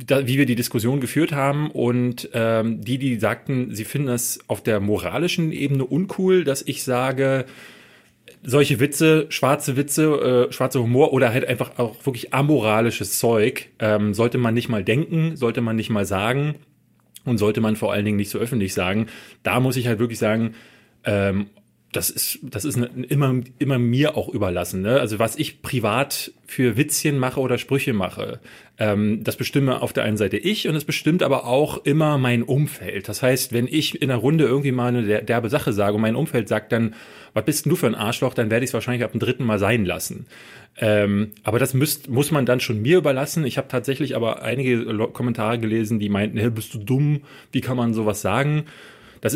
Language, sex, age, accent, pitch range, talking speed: German, male, 30-49, German, 110-140 Hz, 200 wpm